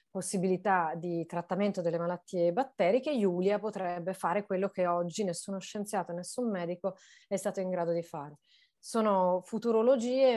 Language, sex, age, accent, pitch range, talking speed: Italian, female, 30-49, native, 185-210 Hz, 140 wpm